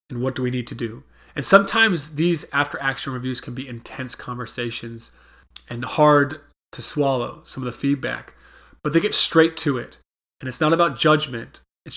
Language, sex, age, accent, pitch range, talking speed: English, male, 30-49, American, 125-155 Hz, 180 wpm